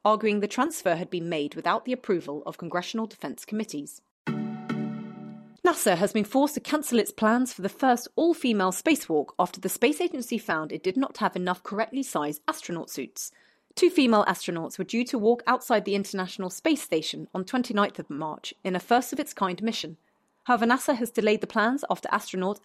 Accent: British